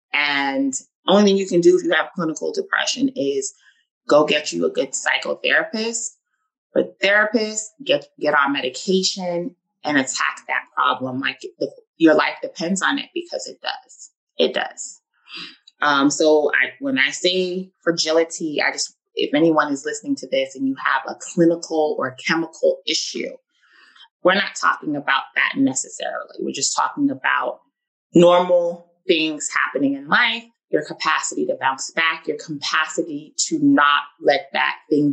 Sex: female